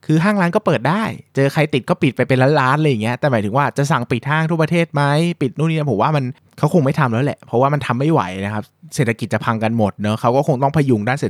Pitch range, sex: 110-145 Hz, male